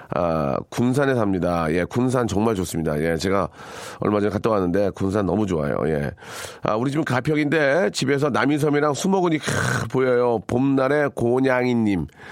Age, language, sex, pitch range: 40-59, Korean, male, 100-145 Hz